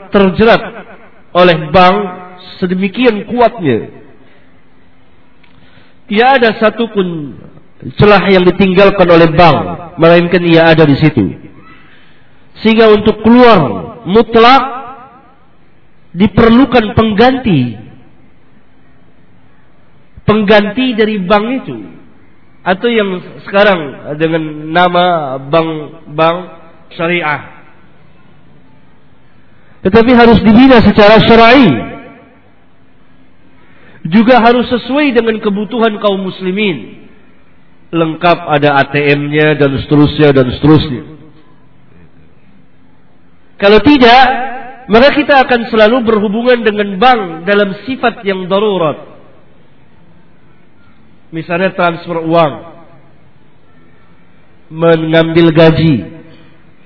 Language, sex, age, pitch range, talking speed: Malay, male, 50-69, 150-220 Hz, 75 wpm